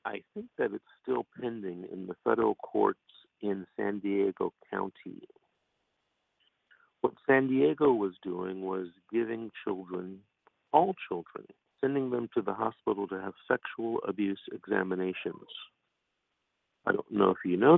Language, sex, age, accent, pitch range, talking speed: English, male, 50-69, American, 95-110 Hz, 135 wpm